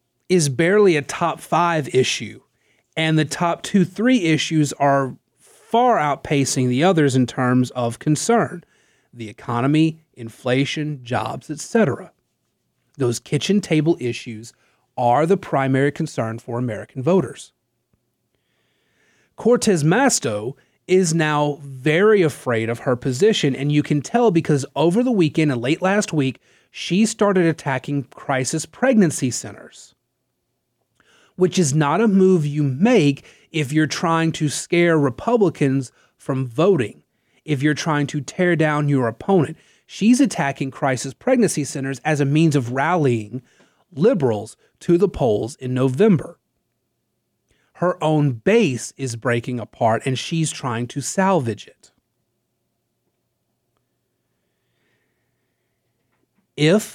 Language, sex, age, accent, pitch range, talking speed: English, male, 30-49, American, 130-170 Hz, 120 wpm